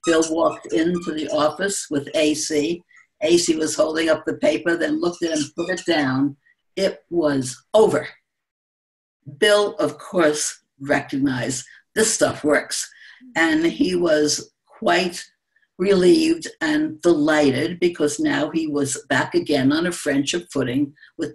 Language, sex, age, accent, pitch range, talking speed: English, female, 60-79, American, 145-185 Hz, 135 wpm